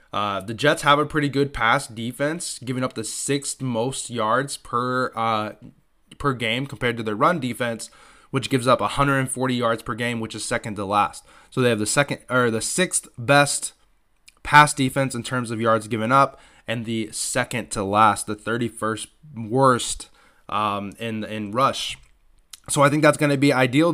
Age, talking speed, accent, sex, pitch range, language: 20-39, 185 wpm, American, male, 115-140 Hz, English